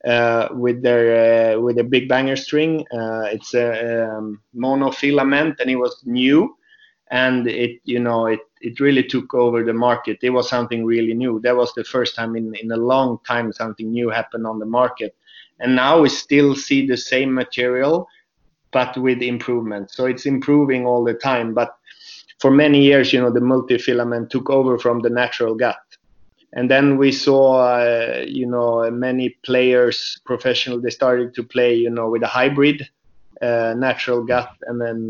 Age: 30-49